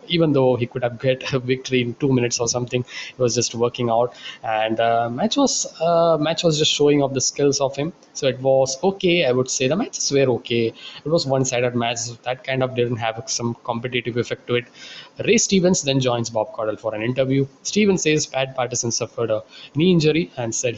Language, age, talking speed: English, 20-39, 215 wpm